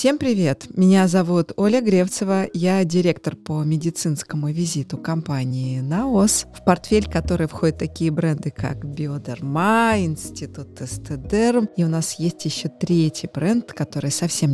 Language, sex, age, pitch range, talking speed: Russian, female, 20-39, 160-200 Hz, 135 wpm